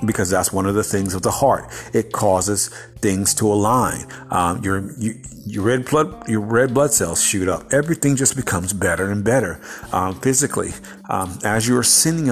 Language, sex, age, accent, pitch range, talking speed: English, male, 50-69, American, 100-130 Hz, 190 wpm